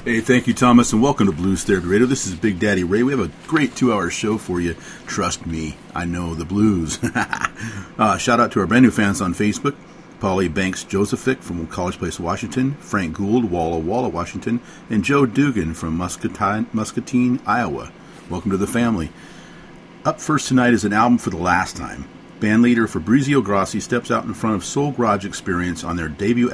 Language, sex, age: English, male, 50-69